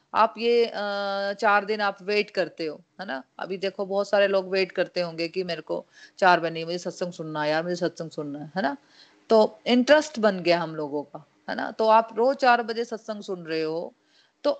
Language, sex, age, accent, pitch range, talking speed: Hindi, female, 30-49, native, 175-235 Hz, 220 wpm